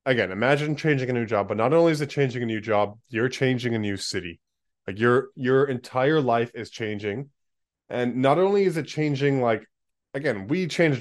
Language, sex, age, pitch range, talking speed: English, male, 20-39, 110-140 Hz, 200 wpm